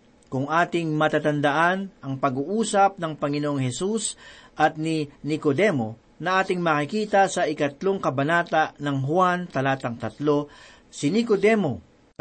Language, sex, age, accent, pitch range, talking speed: Filipino, male, 50-69, native, 140-195 Hz, 115 wpm